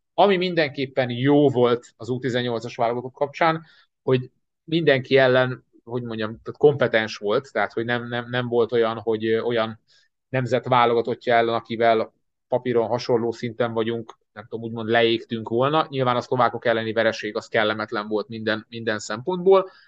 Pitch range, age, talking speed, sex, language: 115-130 Hz, 30-49, 150 wpm, male, Hungarian